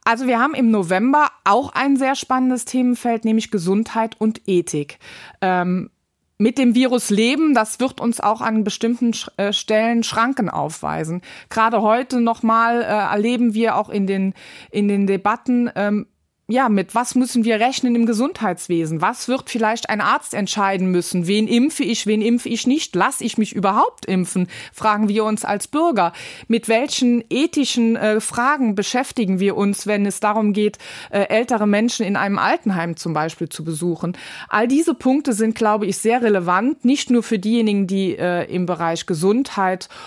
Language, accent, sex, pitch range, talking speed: German, German, female, 190-240 Hz, 170 wpm